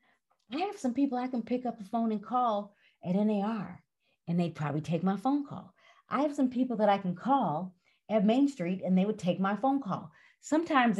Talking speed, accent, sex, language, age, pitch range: 220 wpm, American, female, English, 40-59, 175-240 Hz